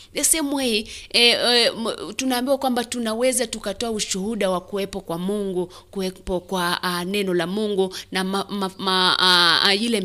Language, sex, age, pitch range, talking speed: English, female, 30-49, 175-205 Hz, 155 wpm